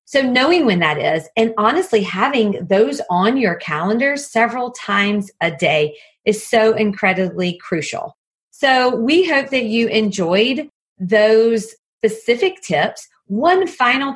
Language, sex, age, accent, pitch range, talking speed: English, female, 40-59, American, 200-255 Hz, 130 wpm